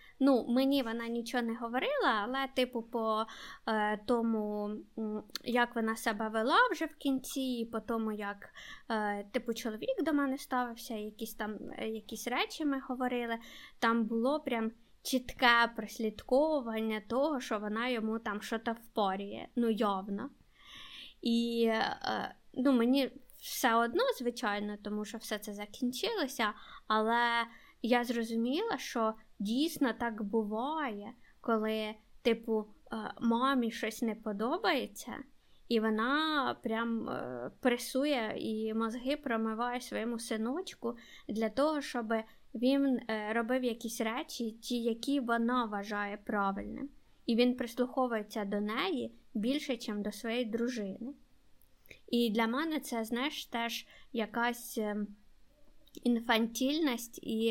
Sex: female